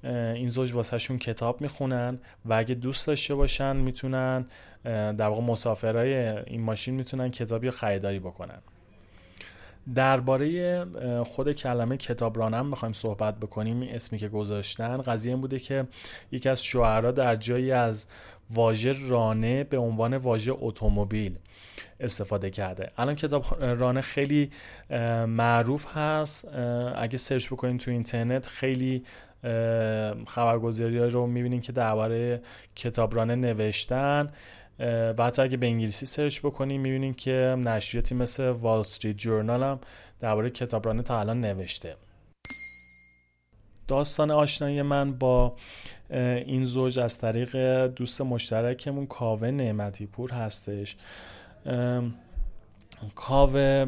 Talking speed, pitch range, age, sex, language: 115 wpm, 110-130 Hz, 30-49, male, Persian